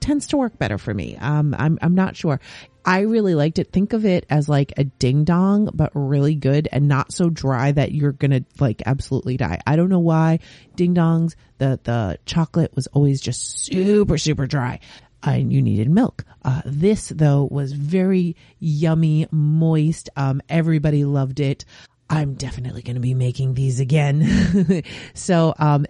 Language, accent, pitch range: English, American, 130-165 Hz